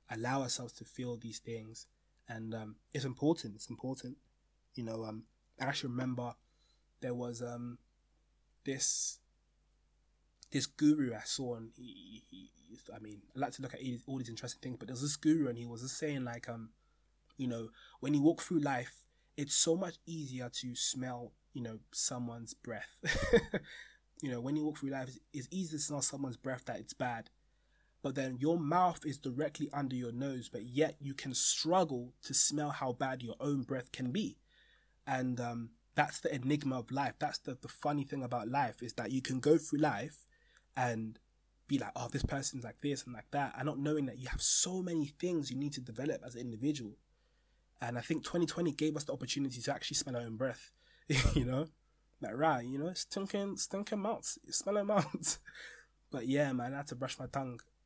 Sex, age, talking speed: male, 20-39, 200 wpm